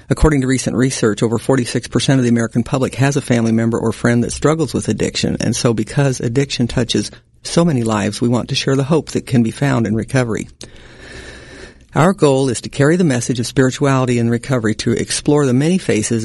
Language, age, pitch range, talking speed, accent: English, 50-69, 120-145 Hz, 205 wpm, American